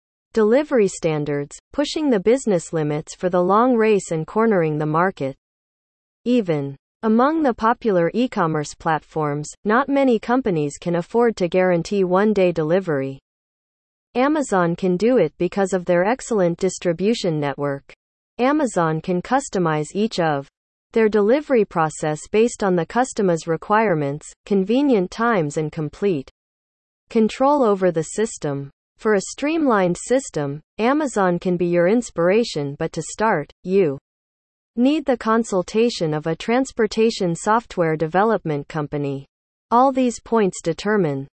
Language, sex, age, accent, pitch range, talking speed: English, female, 40-59, American, 155-230 Hz, 130 wpm